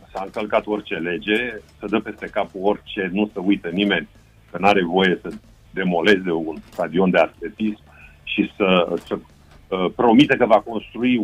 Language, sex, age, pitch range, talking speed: Romanian, male, 50-69, 100-125 Hz, 160 wpm